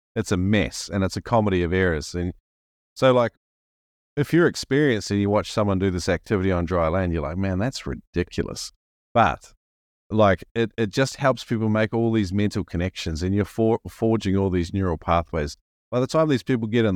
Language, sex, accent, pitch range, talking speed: English, male, Australian, 85-110 Hz, 200 wpm